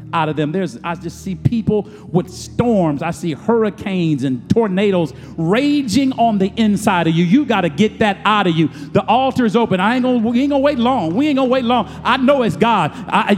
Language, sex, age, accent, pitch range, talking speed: English, male, 50-69, American, 150-245 Hz, 240 wpm